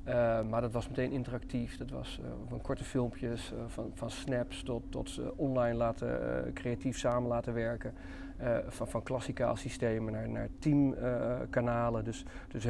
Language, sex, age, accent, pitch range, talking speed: Dutch, male, 40-59, Dutch, 115-130 Hz, 180 wpm